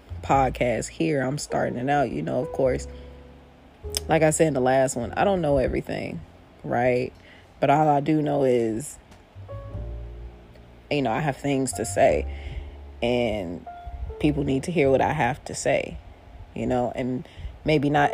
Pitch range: 85-145 Hz